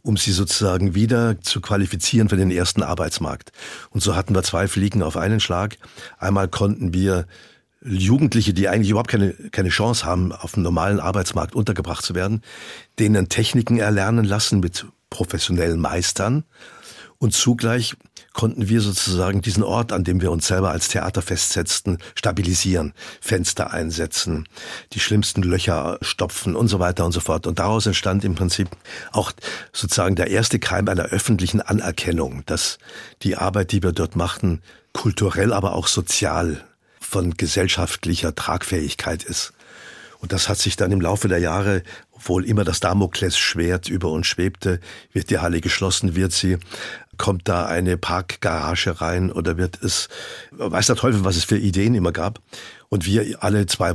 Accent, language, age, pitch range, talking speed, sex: German, German, 50-69, 90-105 Hz, 160 wpm, male